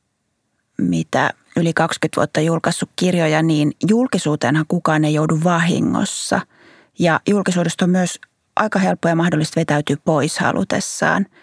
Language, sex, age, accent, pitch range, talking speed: Finnish, female, 30-49, native, 145-180 Hz, 115 wpm